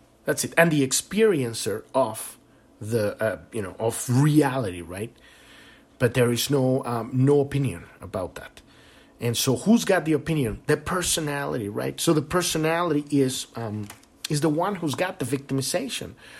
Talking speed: 155 wpm